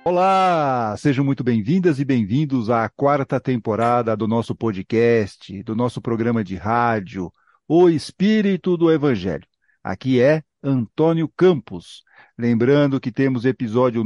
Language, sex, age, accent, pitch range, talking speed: Portuguese, male, 50-69, Brazilian, 120-160 Hz, 125 wpm